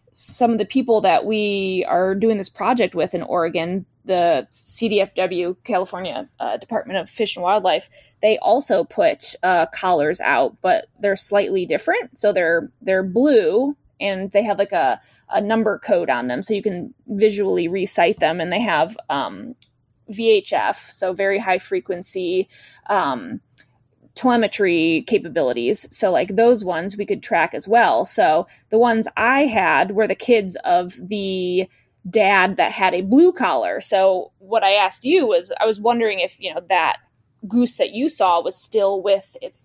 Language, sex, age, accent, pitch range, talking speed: English, female, 20-39, American, 190-240 Hz, 165 wpm